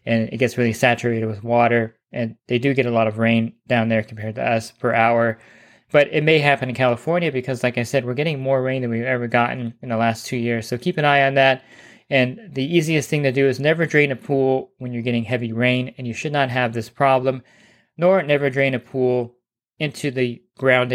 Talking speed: 235 wpm